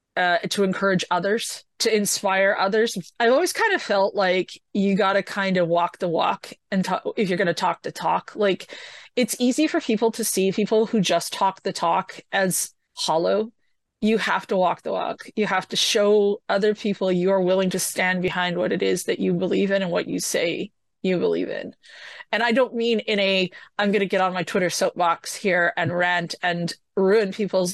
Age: 30-49